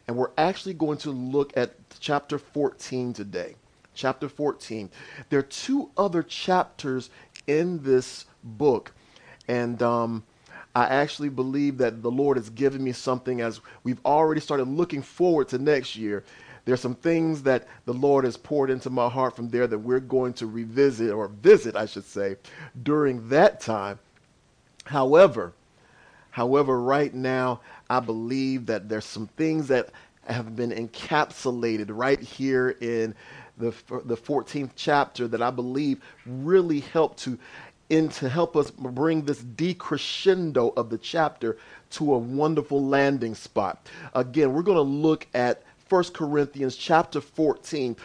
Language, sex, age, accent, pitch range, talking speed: English, male, 40-59, American, 120-150 Hz, 150 wpm